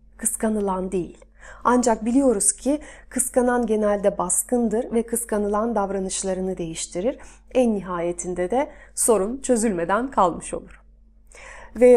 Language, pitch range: Turkish, 200-260 Hz